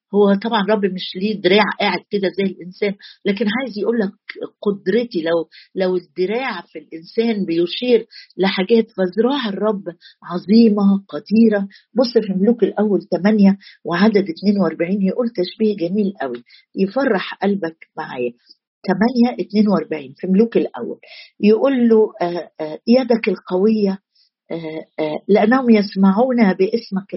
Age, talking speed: 50-69, 115 wpm